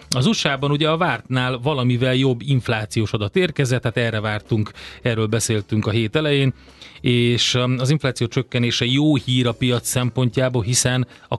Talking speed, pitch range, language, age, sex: 155 wpm, 110-130 Hz, Hungarian, 30-49, male